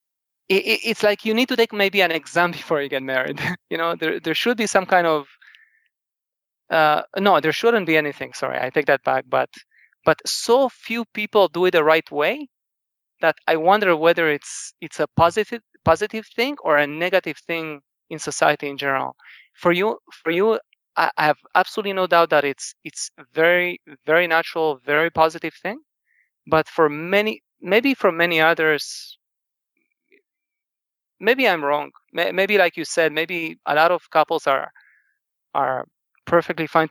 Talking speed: 165 wpm